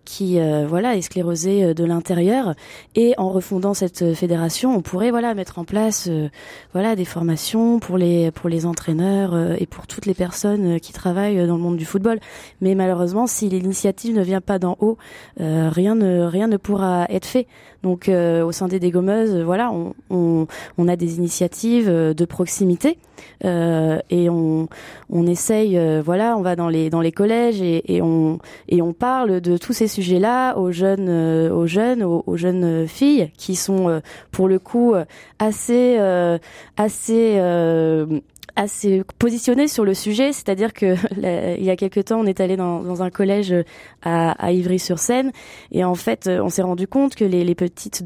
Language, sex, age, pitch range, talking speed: French, female, 20-39, 175-210 Hz, 185 wpm